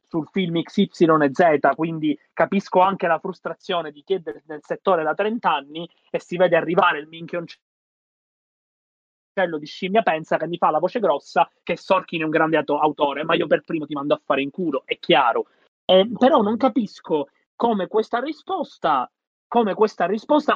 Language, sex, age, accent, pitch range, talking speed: Italian, male, 30-49, native, 165-210 Hz, 170 wpm